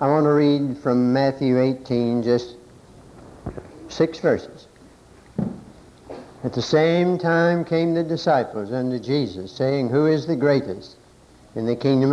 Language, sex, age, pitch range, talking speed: English, male, 60-79, 120-155 Hz, 135 wpm